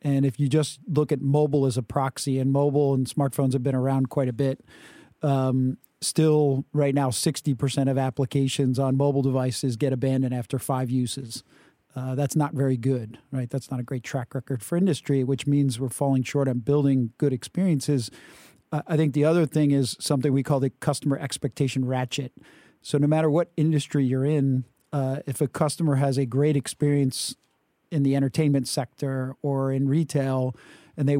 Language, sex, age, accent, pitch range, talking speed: English, male, 40-59, American, 135-145 Hz, 185 wpm